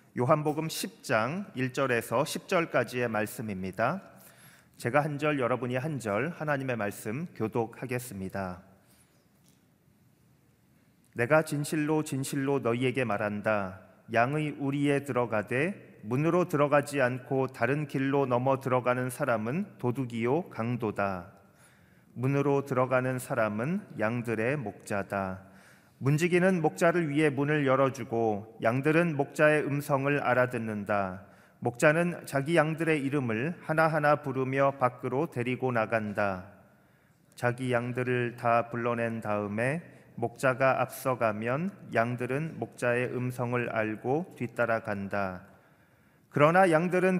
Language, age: Korean, 30-49